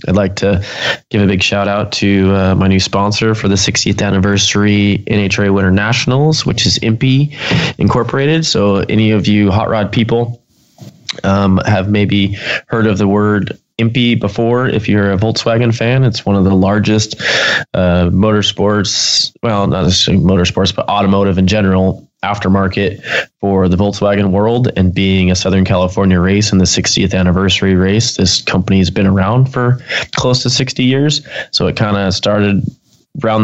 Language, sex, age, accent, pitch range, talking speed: English, male, 20-39, American, 95-115 Hz, 165 wpm